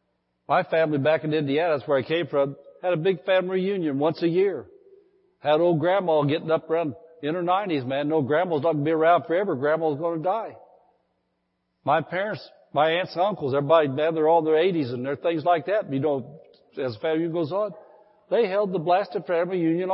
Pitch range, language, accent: 155-210 Hz, English, American